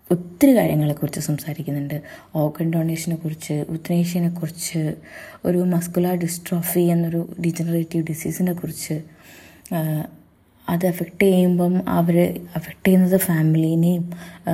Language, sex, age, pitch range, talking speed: Malayalam, female, 20-39, 165-195 Hz, 80 wpm